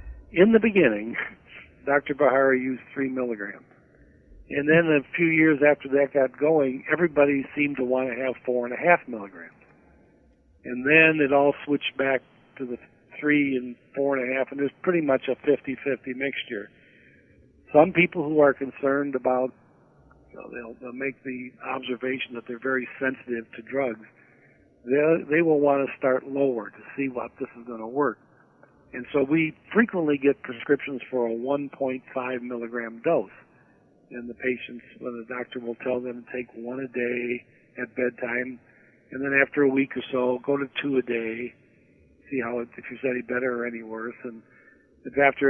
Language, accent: English, American